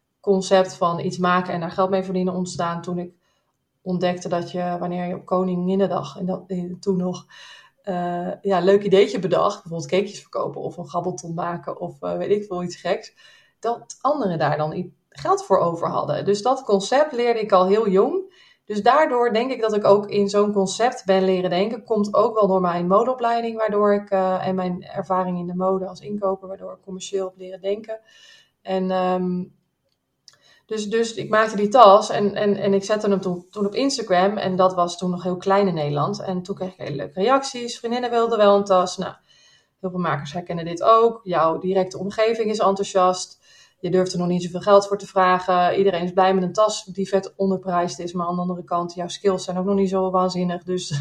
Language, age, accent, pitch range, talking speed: Dutch, 20-39, Dutch, 180-210 Hz, 210 wpm